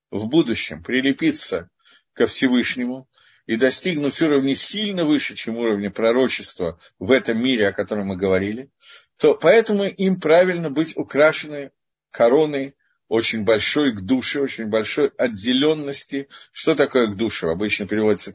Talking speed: 130 wpm